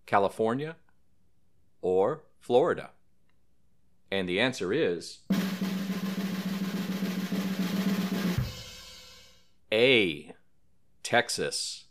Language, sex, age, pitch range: English, male, 40-59, 95-155 Hz